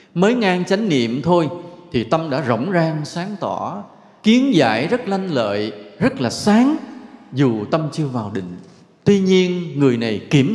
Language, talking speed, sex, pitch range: English, 170 wpm, male, 120-185 Hz